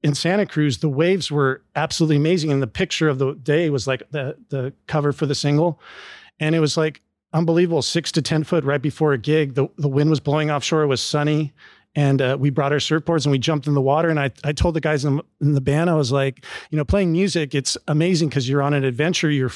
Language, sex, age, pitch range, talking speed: English, male, 40-59, 140-165 Hz, 245 wpm